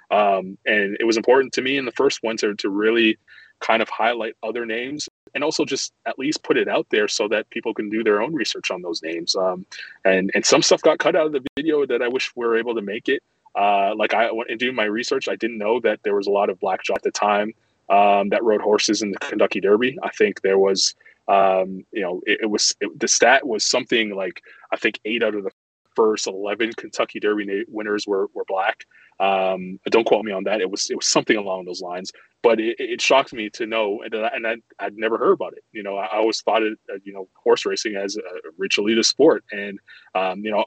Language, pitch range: English, 95-135 Hz